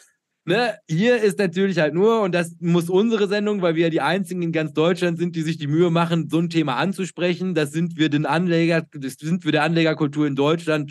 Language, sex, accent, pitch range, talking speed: German, male, German, 145-170 Hz, 220 wpm